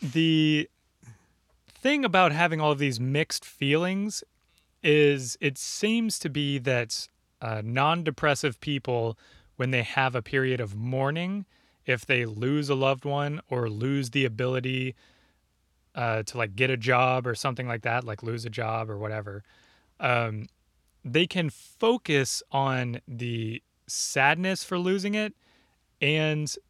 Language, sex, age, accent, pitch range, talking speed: English, male, 20-39, American, 120-150 Hz, 140 wpm